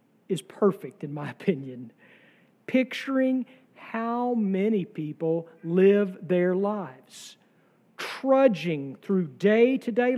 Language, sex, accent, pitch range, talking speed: English, male, American, 185-235 Hz, 90 wpm